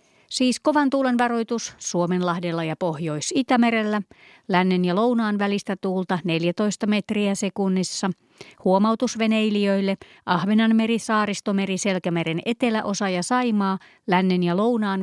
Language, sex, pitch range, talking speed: Finnish, female, 180-230 Hz, 100 wpm